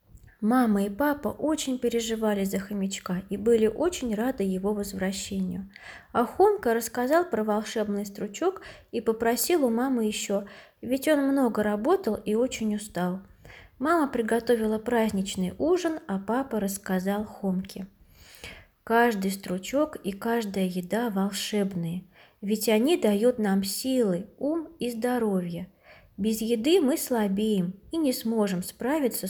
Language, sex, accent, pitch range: Russian, female, native, 195-260 Hz